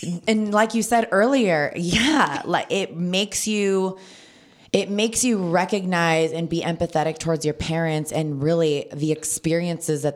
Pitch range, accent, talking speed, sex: 145-175 Hz, American, 150 wpm, female